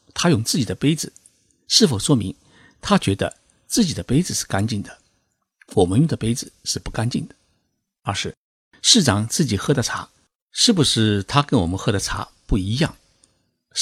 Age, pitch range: 50-69, 95-135 Hz